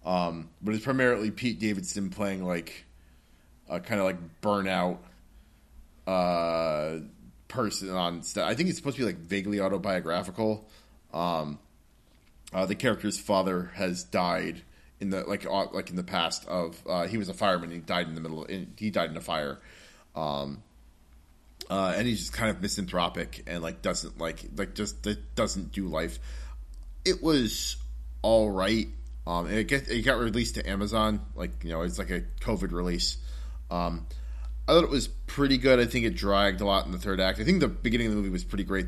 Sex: male